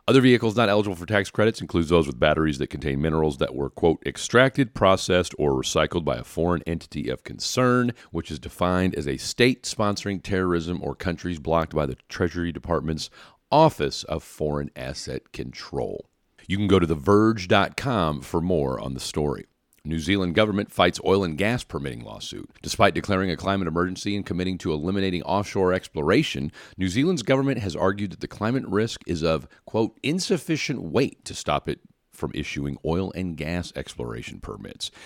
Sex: male